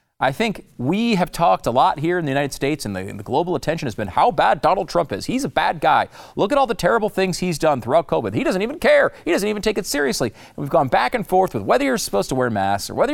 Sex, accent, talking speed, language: male, American, 290 wpm, English